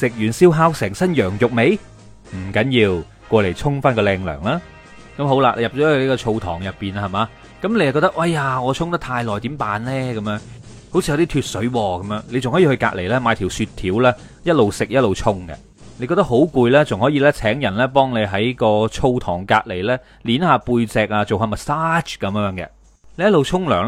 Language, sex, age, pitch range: Chinese, male, 30-49, 105-150 Hz